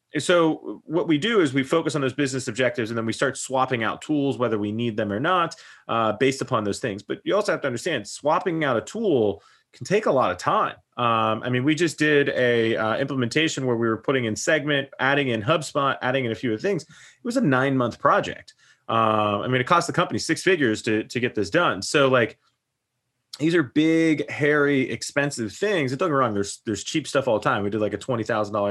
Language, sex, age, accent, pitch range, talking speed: English, male, 30-49, American, 110-150 Hz, 235 wpm